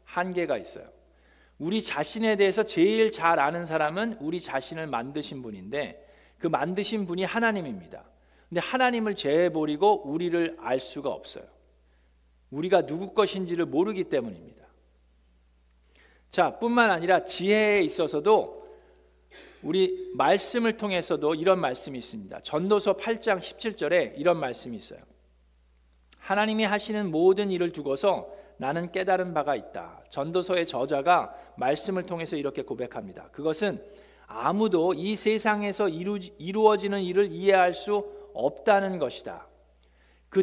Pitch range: 150-210 Hz